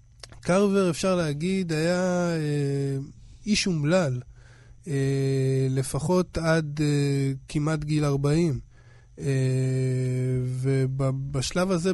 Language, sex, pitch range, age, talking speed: Hebrew, male, 130-155 Hz, 20-39, 65 wpm